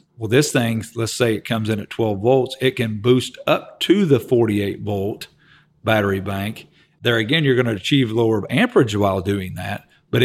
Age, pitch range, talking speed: 50-69, 105-120 Hz, 195 wpm